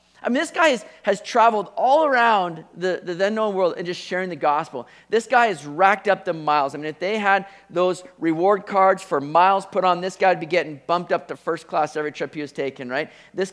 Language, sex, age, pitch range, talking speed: English, male, 40-59, 165-215 Hz, 245 wpm